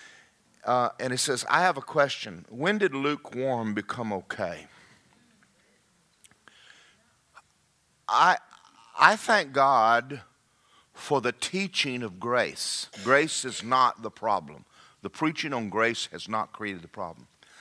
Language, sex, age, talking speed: English, male, 40-59, 125 wpm